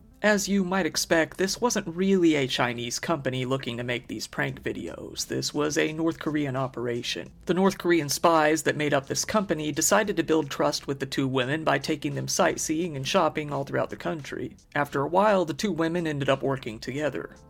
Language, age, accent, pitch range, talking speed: English, 40-59, American, 130-170 Hz, 200 wpm